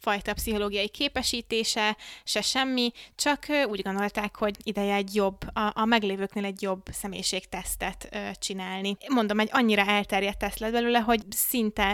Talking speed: 140 wpm